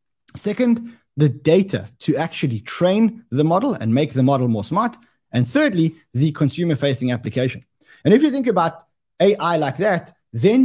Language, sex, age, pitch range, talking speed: English, male, 20-39, 130-185 Hz, 165 wpm